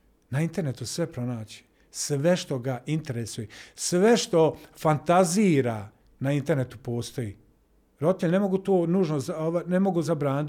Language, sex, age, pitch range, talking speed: Croatian, male, 50-69, 135-175 Hz, 125 wpm